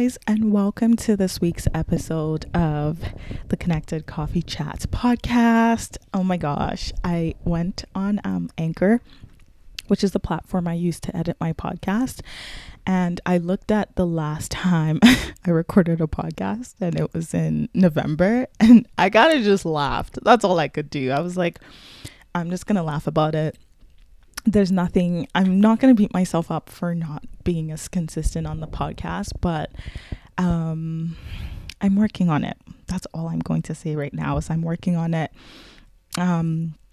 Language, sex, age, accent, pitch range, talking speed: English, female, 20-39, American, 160-200 Hz, 165 wpm